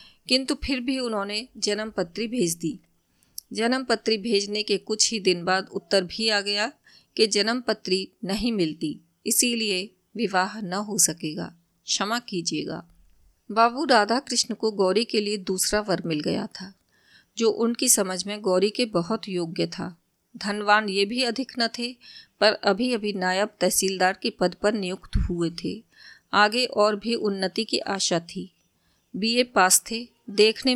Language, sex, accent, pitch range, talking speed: Hindi, female, native, 190-230 Hz, 150 wpm